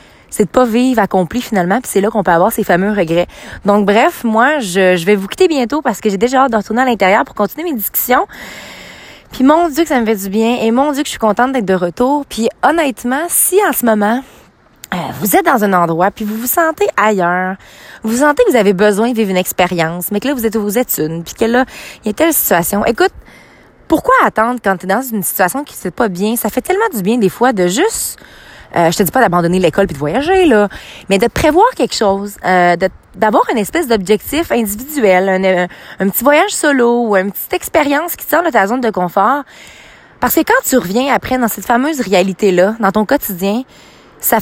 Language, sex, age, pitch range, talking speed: French, female, 20-39, 195-260 Hz, 240 wpm